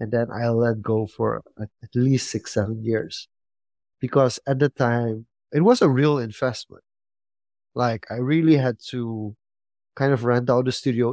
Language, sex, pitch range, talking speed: English, male, 105-125 Hz, 165 wpm